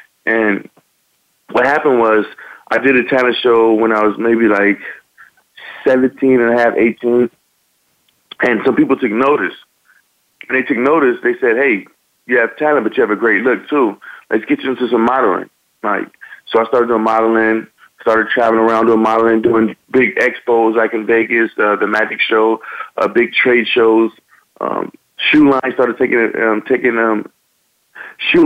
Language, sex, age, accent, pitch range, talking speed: English, male, 30-49, American, 115-130 Hz, 175 wpm